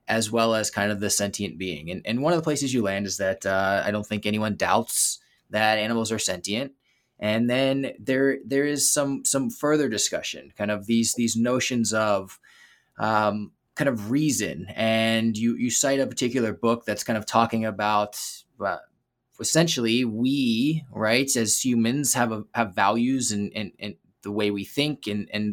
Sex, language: male, English